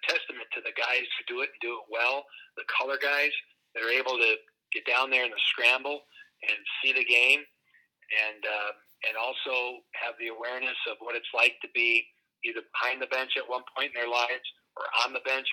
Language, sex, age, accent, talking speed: English, male, 40-59, American, 215 wpm